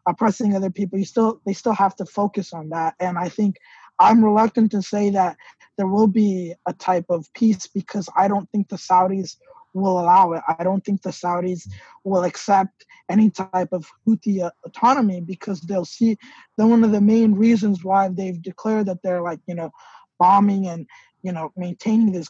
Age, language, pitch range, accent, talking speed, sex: 20-39, English, 170-200 Hz, American, 190 wpm, male